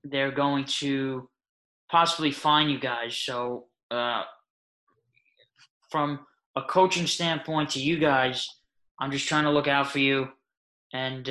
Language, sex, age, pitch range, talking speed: English, male, 20-39, 130-155 Hz, 135 wpm